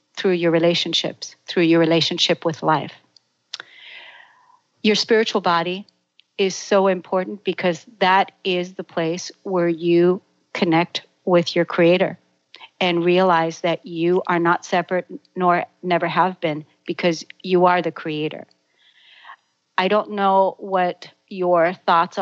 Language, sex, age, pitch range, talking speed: English, female, 40-59, 165-195 Hz, 125 wpm